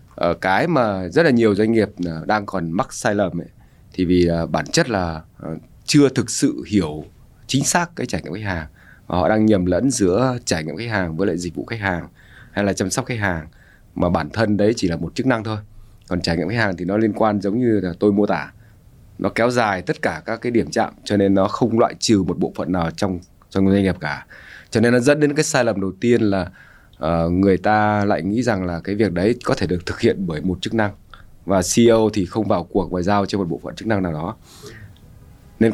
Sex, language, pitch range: male, Vietnamese, 90-115 Hz